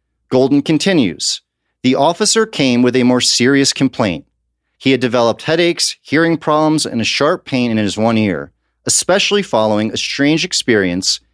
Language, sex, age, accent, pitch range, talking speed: English, male, 40-59, American, 100-145 Hz, 155 wpm